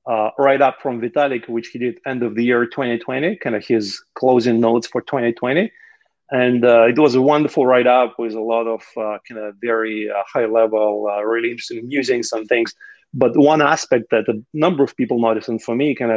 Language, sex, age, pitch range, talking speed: English, male, 30-49, 115-140 Hz, 210 wpm